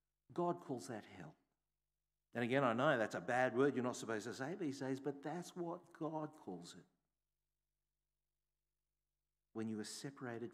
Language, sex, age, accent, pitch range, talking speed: English, male, 50-69, Australian, 115-160 Hz, 170 wpm